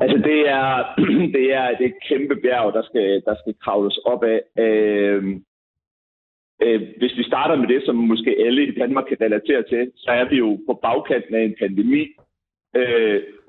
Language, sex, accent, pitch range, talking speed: Danish, male, native, 110-170 Hz, 180 wpm